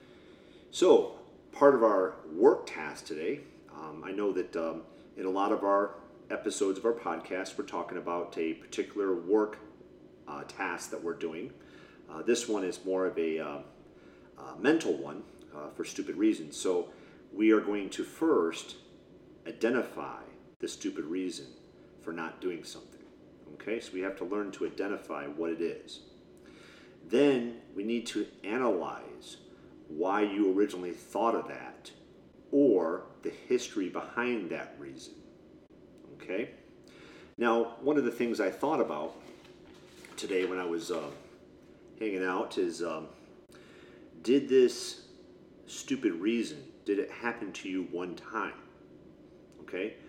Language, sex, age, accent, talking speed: English, male, 40-59, American, 145 wpm